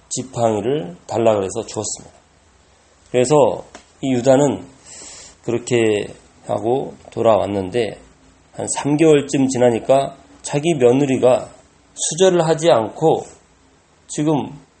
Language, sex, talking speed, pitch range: English, male, 75 wpm, 105-145 Hz